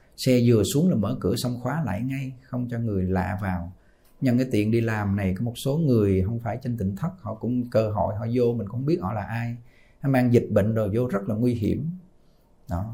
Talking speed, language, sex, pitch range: 245 wpm, Vietnamese, male, 105-130 Hz